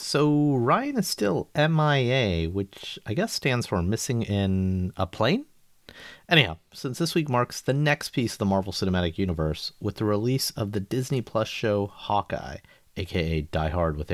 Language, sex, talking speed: English, male, 170 wpm